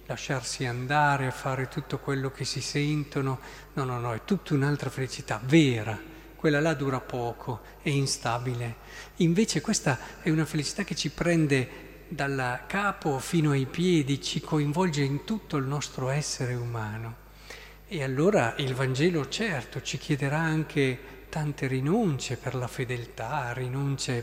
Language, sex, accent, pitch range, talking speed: Italian, male, native, 125-155 Hz, 145 wpm